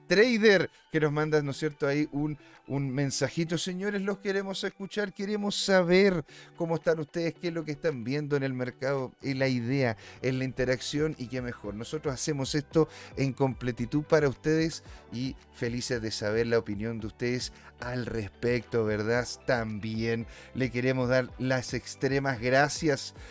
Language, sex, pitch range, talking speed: Spanish, male, 125-165 Hz, 160 wpm